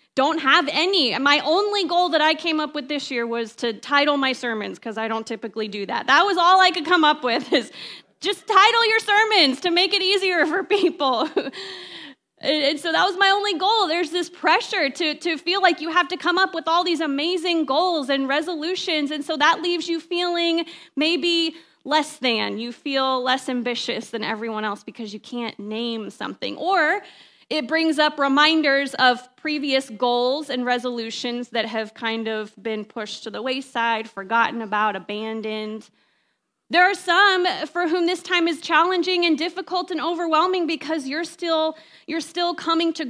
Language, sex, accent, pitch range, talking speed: English, female, American, 250-335 Hz, 180 wpm